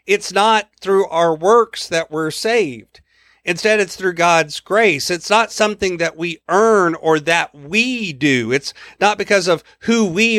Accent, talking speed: American, 170 wpm